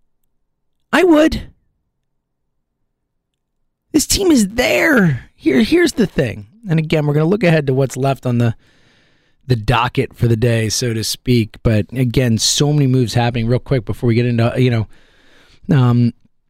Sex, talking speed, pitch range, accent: male, 165 wpm, 110-150 Hz, American